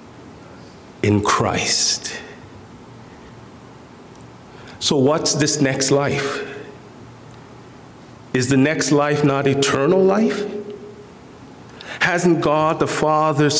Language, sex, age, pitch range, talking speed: English, male, 50-69, 140-190 Hz, 80 wpm